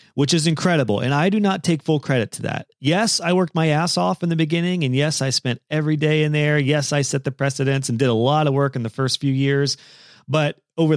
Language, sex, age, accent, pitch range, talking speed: English, male, 30-49, American, 130-155 Hz, 255 wpm